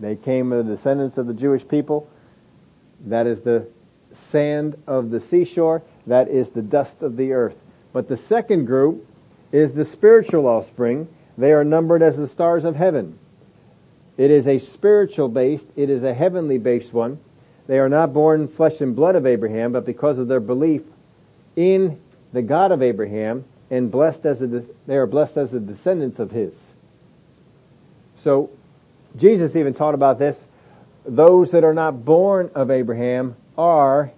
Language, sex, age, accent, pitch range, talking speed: English, male, 50-69, American, 125-160 Hz, 170 wpm